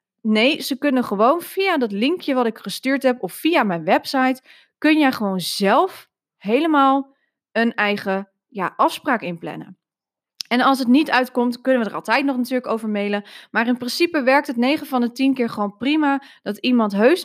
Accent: Dutch